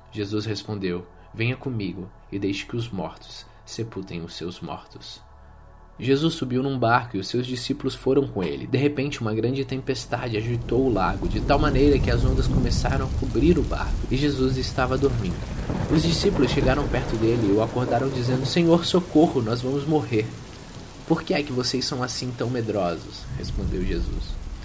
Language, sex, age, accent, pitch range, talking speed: Portuguese, male, 20-39, Brazilian, 100-130 Hz, 175 wpm